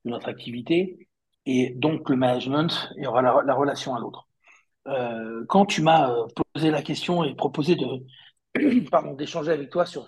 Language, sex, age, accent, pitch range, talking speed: French, male, 60-79, French, 140-195 Hz, 180 wpm